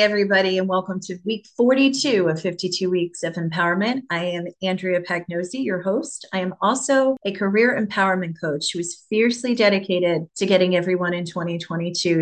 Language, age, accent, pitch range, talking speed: English, 30-49, American, 170-220 Hz, 160 wpm